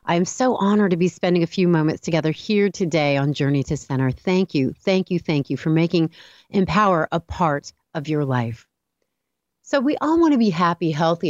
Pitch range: 155-220 Hz